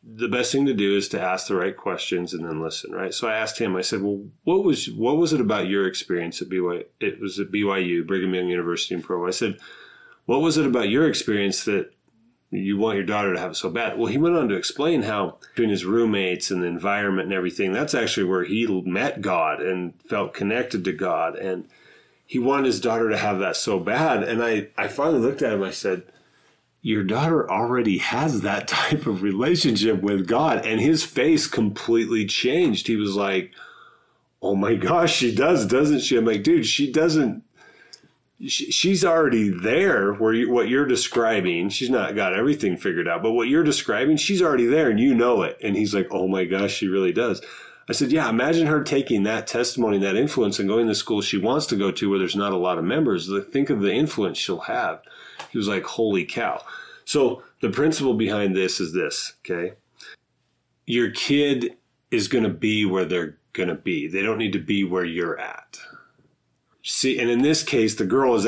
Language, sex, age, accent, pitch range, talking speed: English, male, 30-49, American, 95-125 Hz, 210 wpm